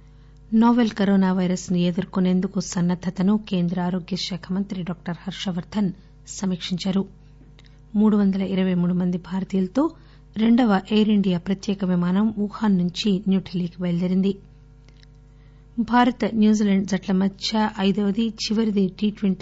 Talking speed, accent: 70 wpm, Indian